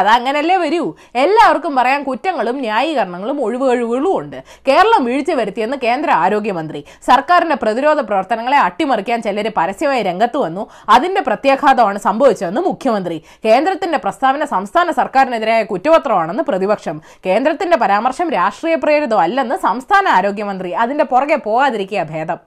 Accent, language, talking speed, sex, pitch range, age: native, Malayalam, 110 wpm, female, 235-355 Hz, 20-39